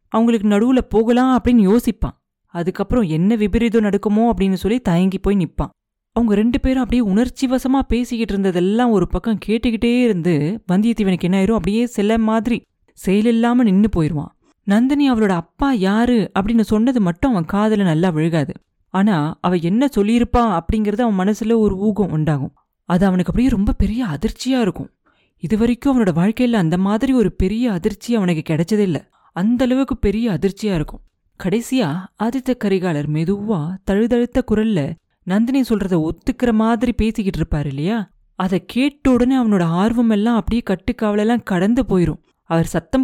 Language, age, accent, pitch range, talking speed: Tamil, 30-49, native, 185-235 Hz, 145 wpm